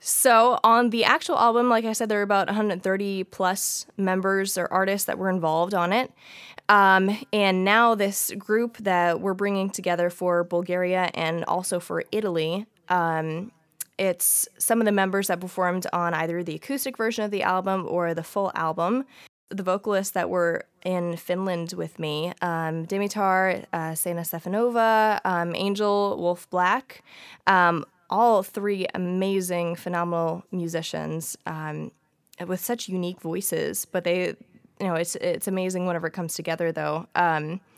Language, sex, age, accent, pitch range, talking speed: English, female, 20-39, American, 175-200 Hz, 155 wpm